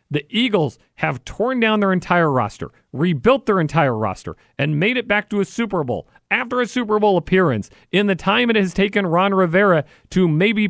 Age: 40-59